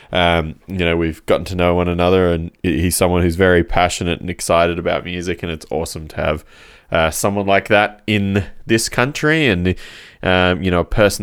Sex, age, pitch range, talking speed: male, 20-39, 90-105 Hz, 200 wpm